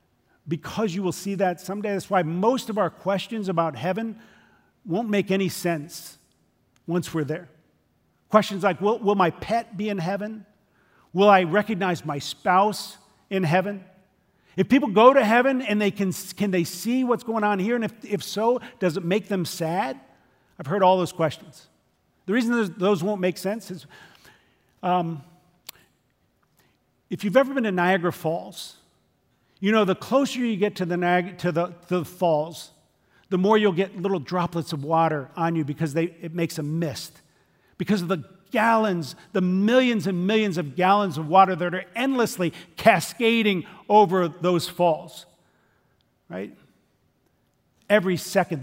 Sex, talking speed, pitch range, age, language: male, 165 wpm, 165-205 Hz, 50-69, English